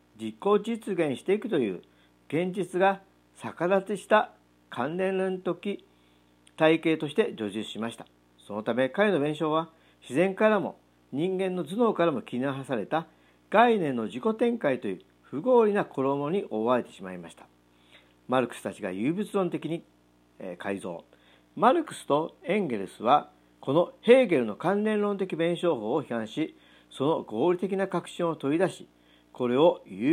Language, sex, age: Japanese, male, 50-69